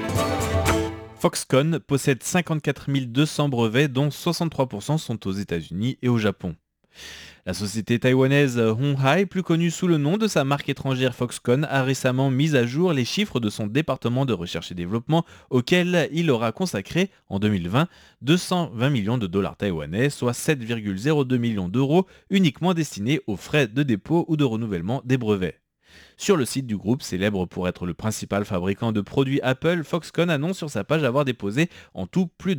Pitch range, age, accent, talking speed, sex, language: 110-150 Hz, 30-49, French, 170 wpm, male, French